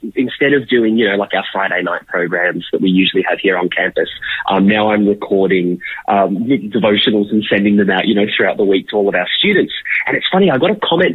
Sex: male